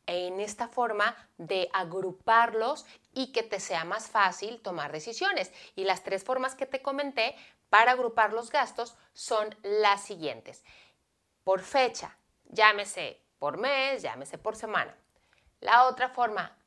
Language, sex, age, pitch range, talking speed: Spanish, female, 30-49, 185-235 Hz, 135 wpm